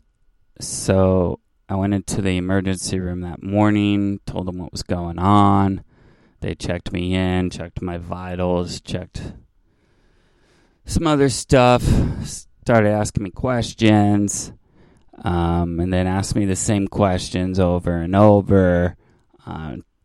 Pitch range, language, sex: 90-105 Hz, English, male